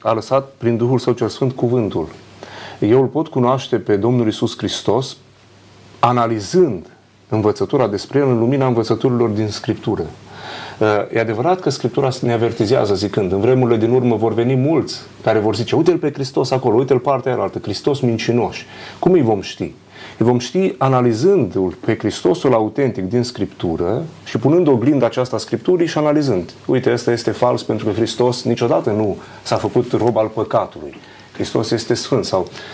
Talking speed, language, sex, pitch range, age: 165 wpm, Romanian, male, 110-130 Hz, 30-49